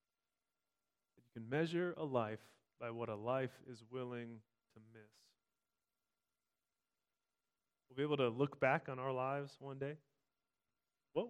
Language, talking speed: English, 135 wpm